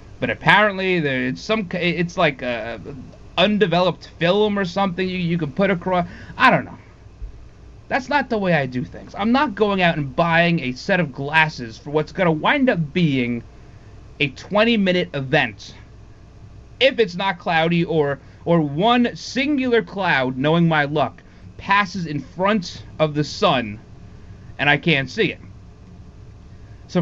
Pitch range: 120-190 Hz